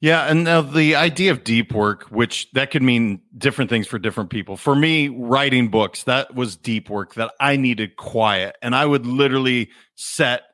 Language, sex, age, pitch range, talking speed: English, male, 40-59, 120-150 Hz, 195 wpm